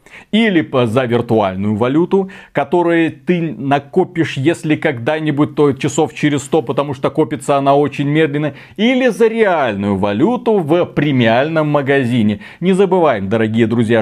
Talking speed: 130 wpm